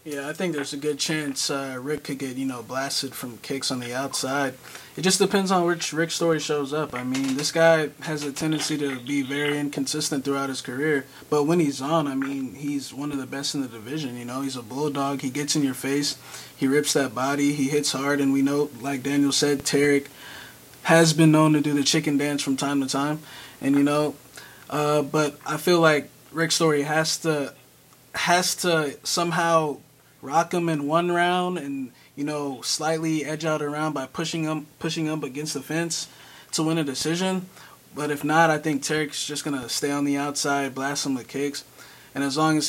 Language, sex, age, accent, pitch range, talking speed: English, male, 20-39, American, 140-155 Hz, 215 wpm